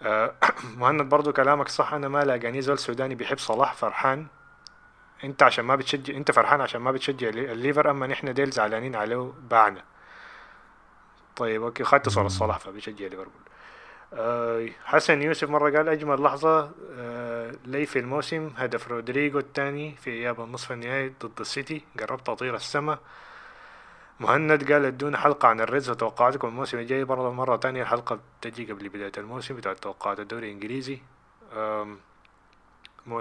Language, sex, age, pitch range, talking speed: Arabic, male, 20-39, 115-140 Hz, 145 wpm